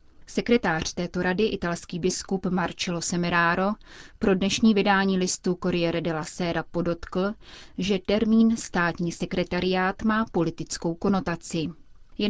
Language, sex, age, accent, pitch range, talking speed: Czech, female, 30-49, native, 175-200 Hz, 110 wpm